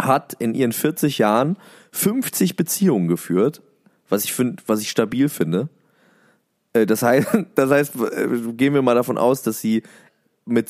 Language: German